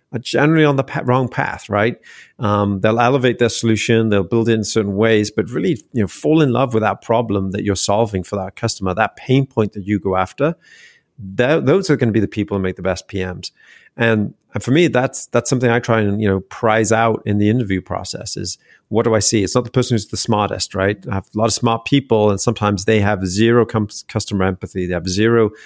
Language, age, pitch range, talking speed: English, 30-49, 100-115 Hz, 245 wpm